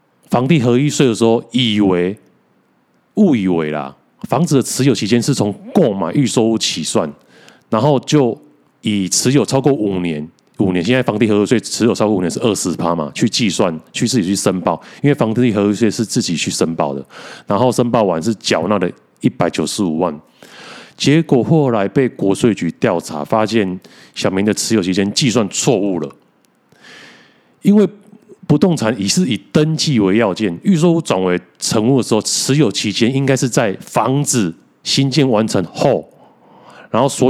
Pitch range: 100-140 Hz